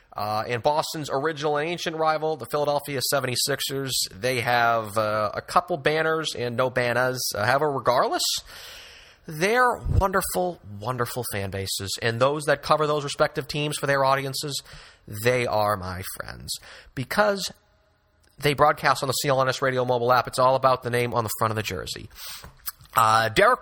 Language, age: English, 30-49